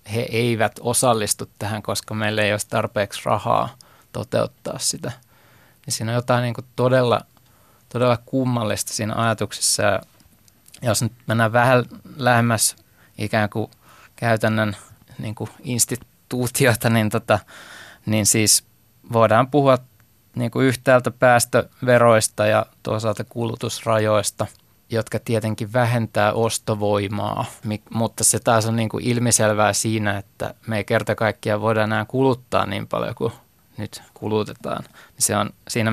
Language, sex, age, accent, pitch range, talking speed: Finnish, male, 20-39, native, 105-120 Hz, 105 wpm